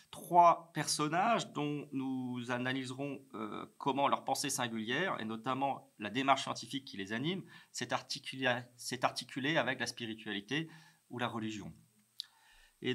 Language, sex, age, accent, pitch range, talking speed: French, male, 40-59, French, 120-150 Hz, 130 wpm